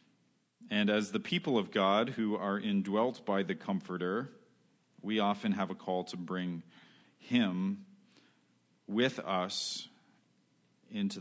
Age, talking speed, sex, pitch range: 40-59, 125 wpm, male, 90-125 Hz